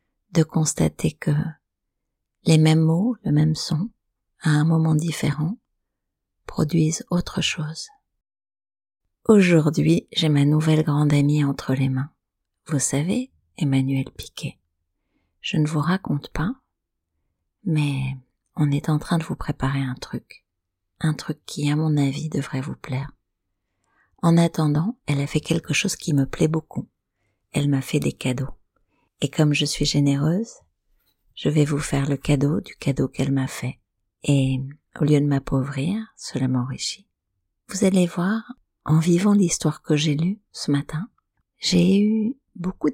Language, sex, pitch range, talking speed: French, female, 135-175 Hz, 150 wpm